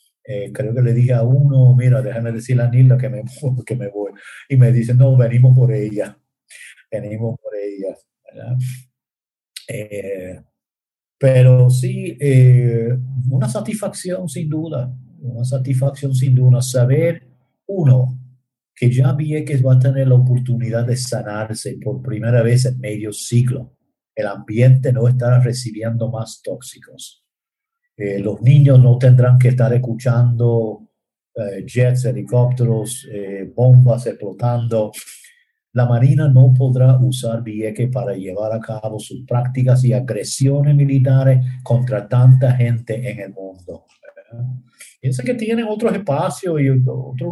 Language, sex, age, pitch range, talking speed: Spanish, male, 50-69, 120-135 Hz, 135 wpm